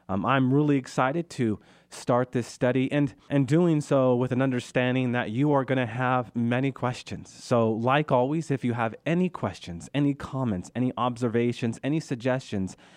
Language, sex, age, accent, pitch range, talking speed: English, male, 30-49, American, 105-125 Hz, 170 wpm